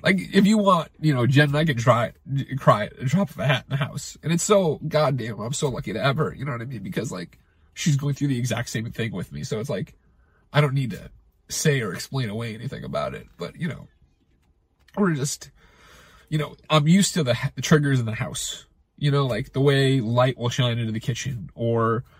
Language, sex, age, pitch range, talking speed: English, male, 30-49, 110-150 Hz, 230 wpm